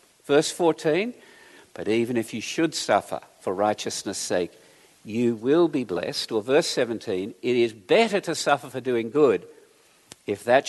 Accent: Australian